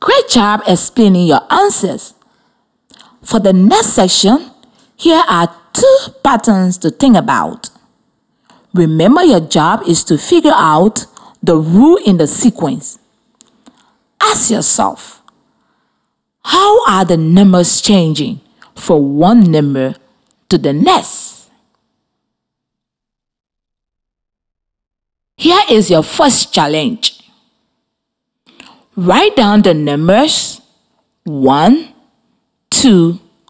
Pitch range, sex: 175-245 Hz, female